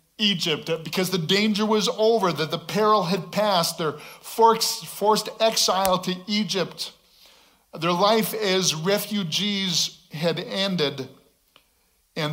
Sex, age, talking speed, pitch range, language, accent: male, 50-69, 110 wpm, 150-195 Hz, English, American